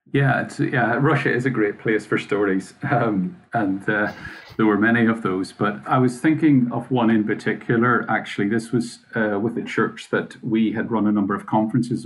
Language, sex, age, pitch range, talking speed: English, male, 40-59, 100-120 Hz, 205 wpm